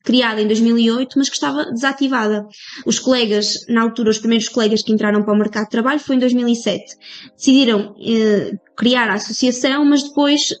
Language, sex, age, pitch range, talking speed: Portuguese, female, 20-39, 220-270 Hz, 175 wpm